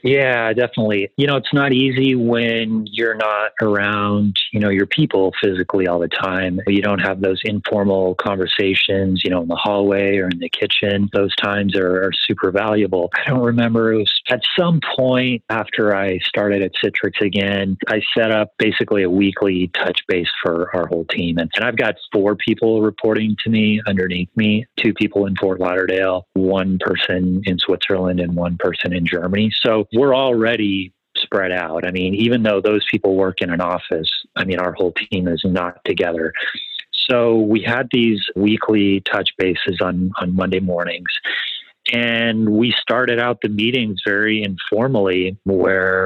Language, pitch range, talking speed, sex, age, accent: English, 95-110 Hz, 175 wpm, male, 30-49, American